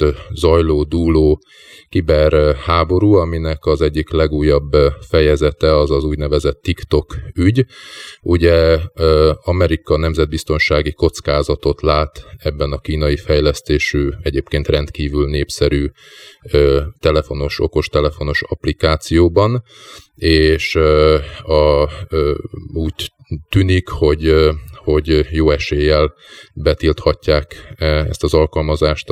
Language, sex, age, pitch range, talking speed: Hungarian, male, 30-49, 75-85 Hz, 80 wpm